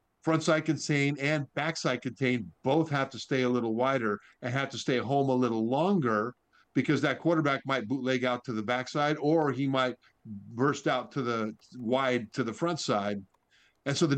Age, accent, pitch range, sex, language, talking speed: 50-69, American, 115-140 Hz, male, English, 190 wpm